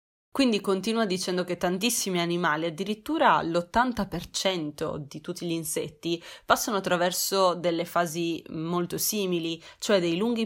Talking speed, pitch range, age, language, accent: 120 wpm, 170-215 Hz, 20-39, Italian, native